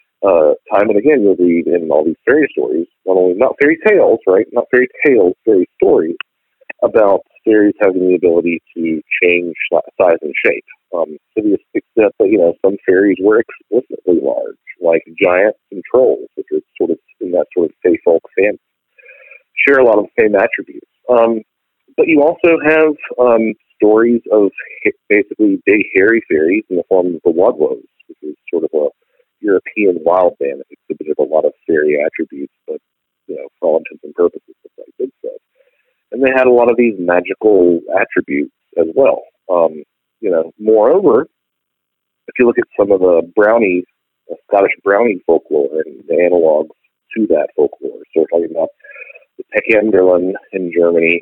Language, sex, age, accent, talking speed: English, male, 40-59, American, 175 wpm